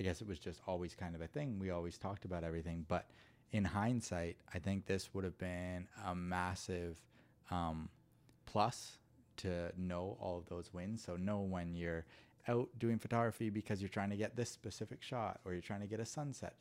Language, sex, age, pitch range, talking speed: English, male, 30-49, 85-105 Hz, 200 wpm